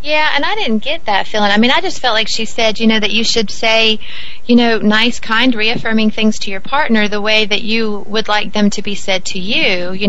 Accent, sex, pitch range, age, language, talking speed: American, female, 185-225 Hz, 30-49, English, 255 wpm